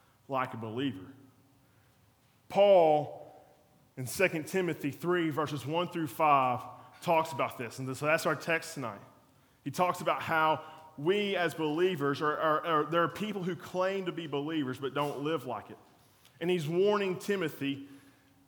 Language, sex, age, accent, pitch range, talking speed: English, male, 20-39, American, 130-165 Hz, 145 wpm